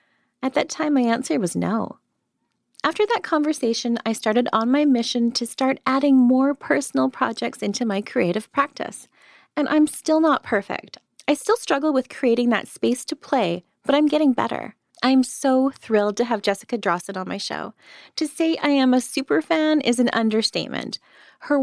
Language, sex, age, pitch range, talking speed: English, female, 20-39, 220-285 Hz, 180 wpm